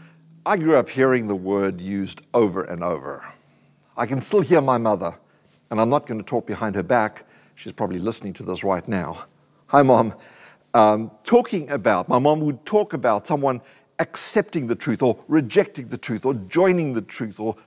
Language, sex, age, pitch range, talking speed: English, male, 60-79, 110-150 Hz, 185 wpm